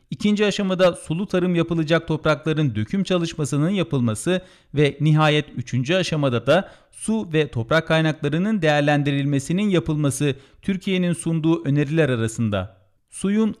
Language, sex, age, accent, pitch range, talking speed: Turkish, male, 40-59, native, 125-170 Hz, 110 wpm